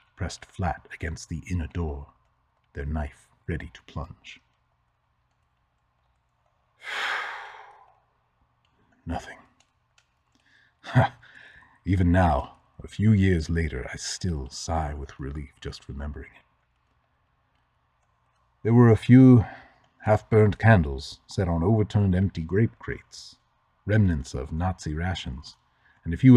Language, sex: English, male